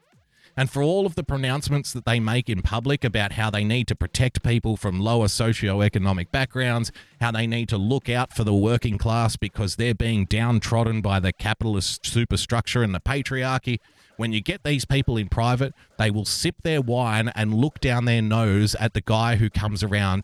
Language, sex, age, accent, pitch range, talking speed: English, male, 30-49, Australian, 105-140 Hz, 195 wpm